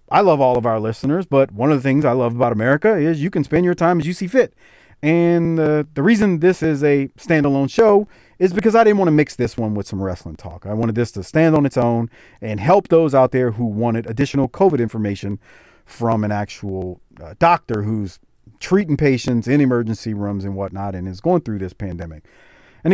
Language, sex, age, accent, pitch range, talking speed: English, male, 40-59, American, 115-160 Hz, 220 wpm